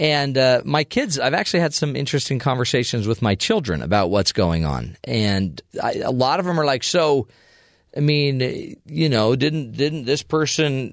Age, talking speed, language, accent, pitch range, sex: 40-59, 185 wpm, English, American, 115-150 Hz, male